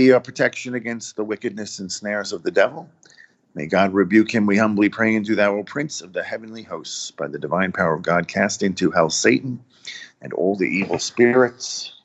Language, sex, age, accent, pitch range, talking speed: English, male, 50-69, American, 100-115 Hz, 195 wpm